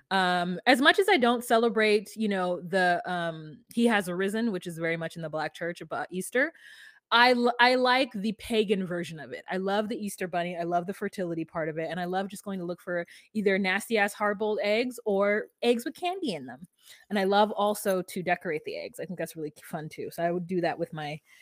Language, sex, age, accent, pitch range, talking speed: English, female, 20-39, American, 180-225 Hz, 240 wpm